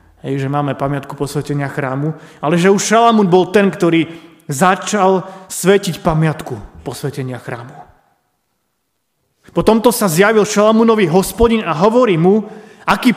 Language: Slovak